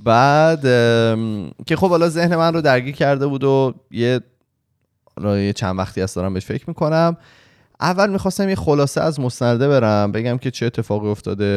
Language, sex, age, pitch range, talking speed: Persian, male, 20-39, 90-125 Hz, 165 wpm